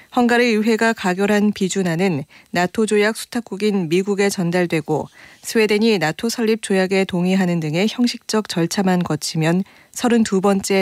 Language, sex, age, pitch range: Korean, female, 40-59, 175-215 Hz